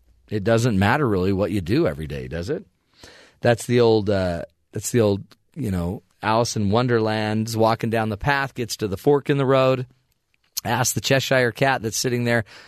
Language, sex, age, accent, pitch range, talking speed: English, male, 40-59, American, 95-135 Hz, 195 wpm